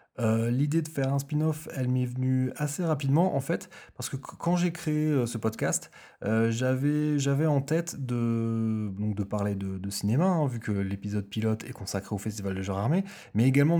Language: French